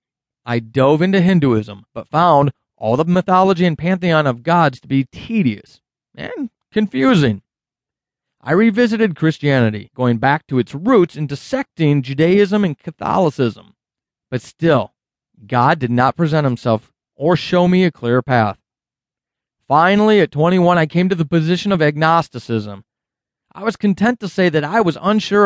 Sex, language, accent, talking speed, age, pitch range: male, English, American, 150 wpm, 40-59, 125-180 Hz